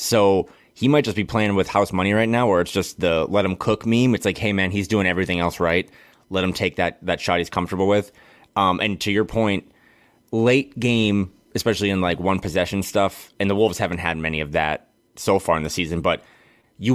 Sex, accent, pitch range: male, American, 95-115 Hz